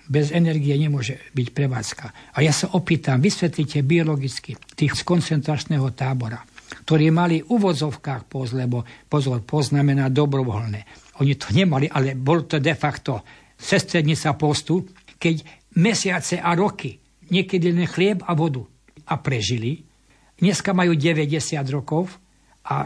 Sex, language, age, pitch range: male, Slovak, 60-79, 130-170 Hz